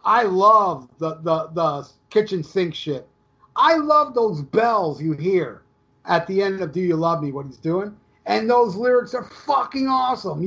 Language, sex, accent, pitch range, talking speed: English, male, American, 160-230 Hz, 180 wpm